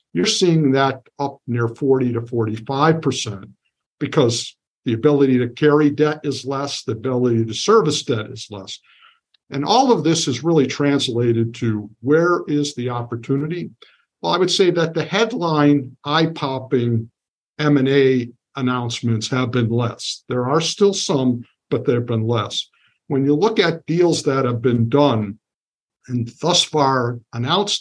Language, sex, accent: English, male, American